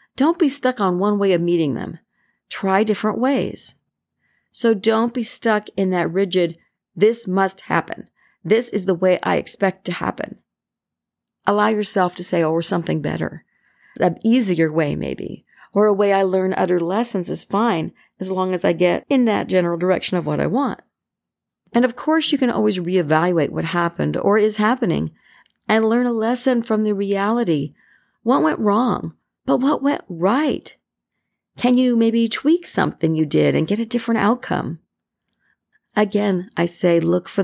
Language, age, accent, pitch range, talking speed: English, 50-69, American, 170-230 Hz, 170 wpm